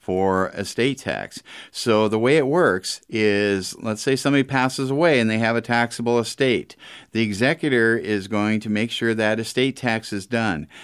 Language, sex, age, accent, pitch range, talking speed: English, male, 50-69, American, 105-140 Hz, 175 wpm